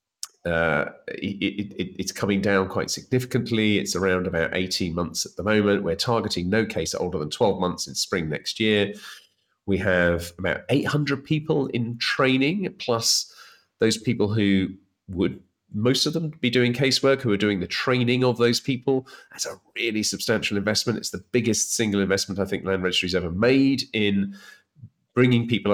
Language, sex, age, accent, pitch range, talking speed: English, male, 30-49, British, 90-120 Hz, 170 wpm